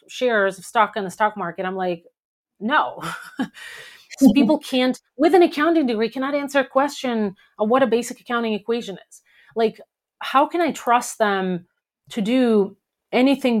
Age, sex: 30-49, female